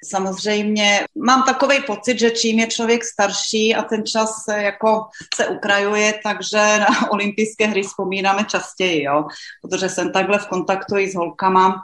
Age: 30-49